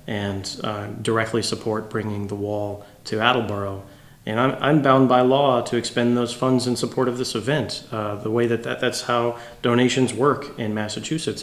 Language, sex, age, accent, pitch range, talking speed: English, male, 30-49, American, 110-130 Hz, 185 wpm